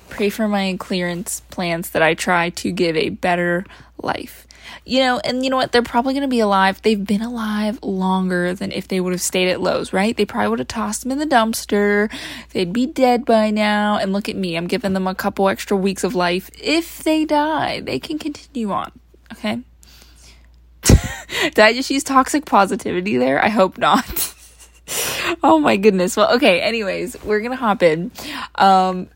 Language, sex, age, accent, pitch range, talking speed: English, female, 20-39, American, 180-235 Hz, 195 wpm